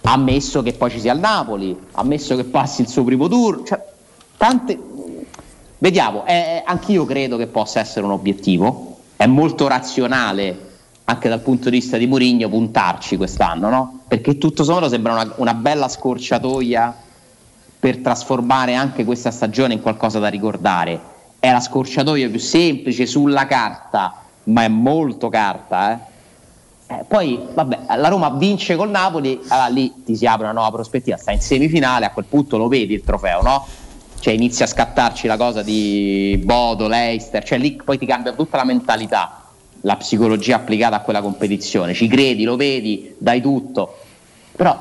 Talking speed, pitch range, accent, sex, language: 165 wpm, 110-135 Hz, native, male, Italian